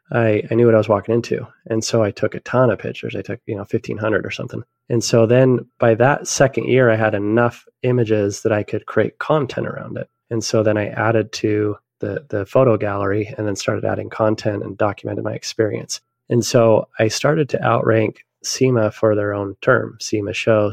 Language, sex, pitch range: English, male, 105-120 Hz